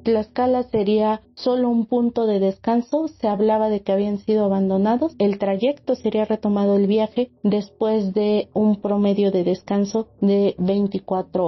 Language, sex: Spanish, female